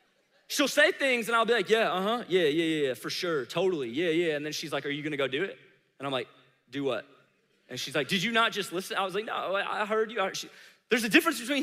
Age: 20-39